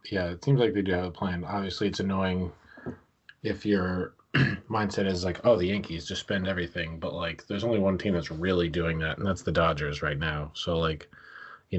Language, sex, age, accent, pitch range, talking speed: English, male, 30-49, American, 85-90 Hz, 215 wpm